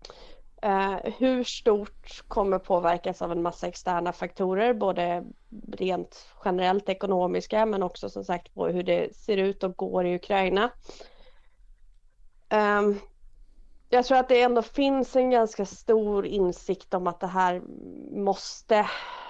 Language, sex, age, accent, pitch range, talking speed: Swedish, female, 30-49, native, 185-225 Hz, 135 wpm